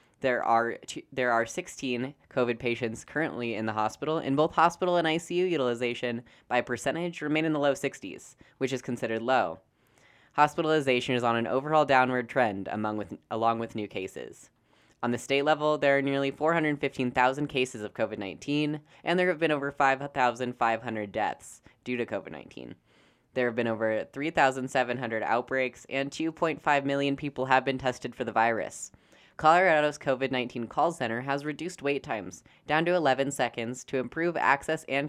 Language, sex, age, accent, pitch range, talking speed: English, female, 10-29, American, 115-145 Hz, 160 wpm